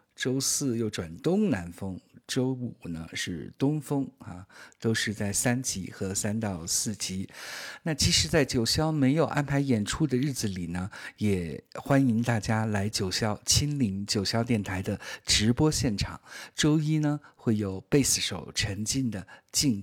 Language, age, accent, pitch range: Chinese, 50-69, native, 100-135 Hz